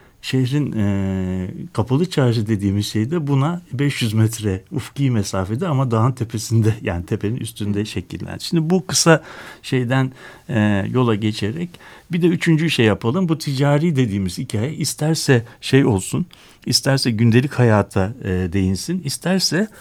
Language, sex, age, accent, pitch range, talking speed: Turkish, male, 60-79, native, 100-145 Hz, 135 wpm